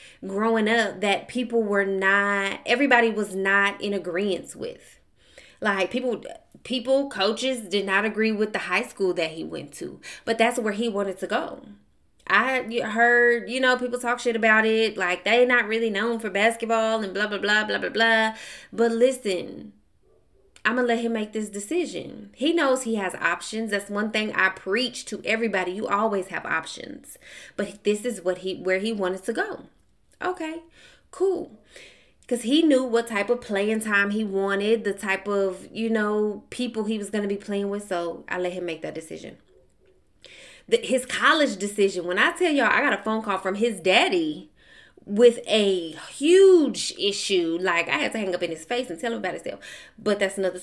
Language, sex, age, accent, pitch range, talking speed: English, female, 20-39, American, 195-240 Hz, 190 wpm